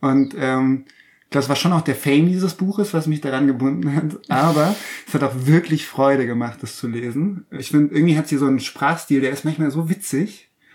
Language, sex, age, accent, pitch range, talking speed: German, male, 20-39, German, 130-150 Hz, 210 wpm